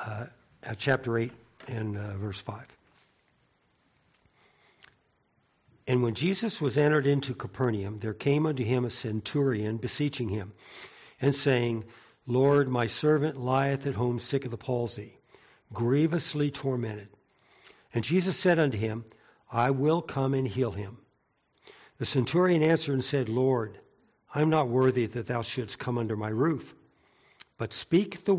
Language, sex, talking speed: English, male, 140 wpm